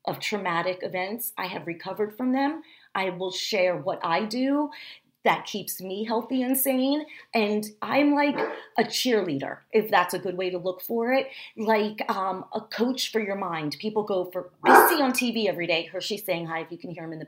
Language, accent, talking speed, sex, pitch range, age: English, American, 210 wpm, female, 185-250 Hz, 30-49